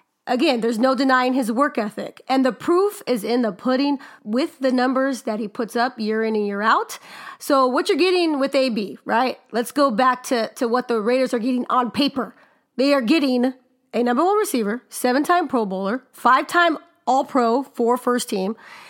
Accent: American